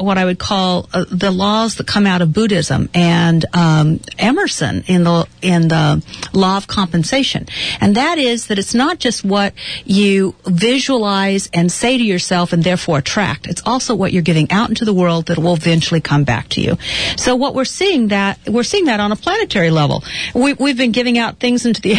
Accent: American